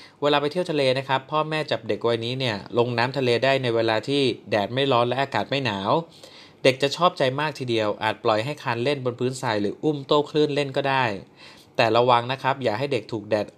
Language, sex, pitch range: Thai, male, 115-145 Hz